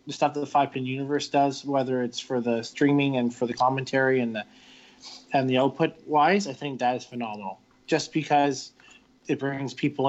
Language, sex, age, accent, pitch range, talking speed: English, male, 20-39, American, 130-150 Hz, 195 wpm